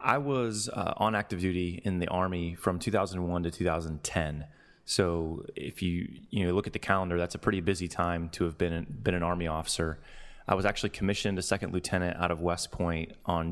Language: English